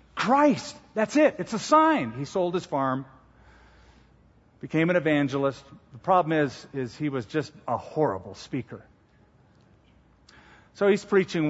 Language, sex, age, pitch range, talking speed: English, male, 50-69, 135-190 Hz, 135 wpm